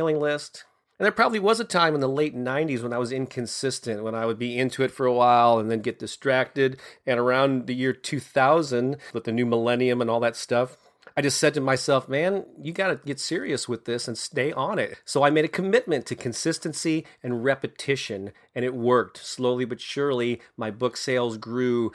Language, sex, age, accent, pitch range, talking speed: English, male, 30-49, American, 115-140 Hz, 210 wpm